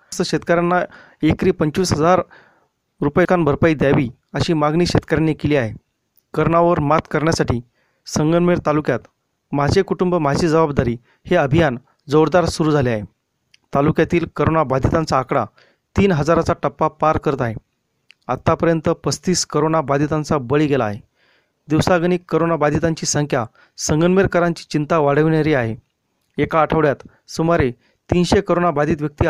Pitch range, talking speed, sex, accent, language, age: 145-170 Hz, 115 wpm, male, native, Marathi, 30-49